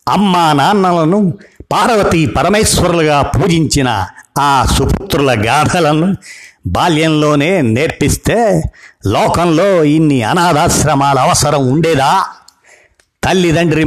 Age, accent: 50-69, native